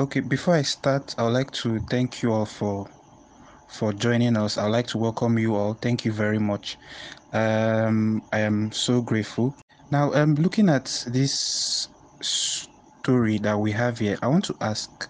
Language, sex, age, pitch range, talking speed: English, male, 20-39, 105-120 Hz, 170 wpm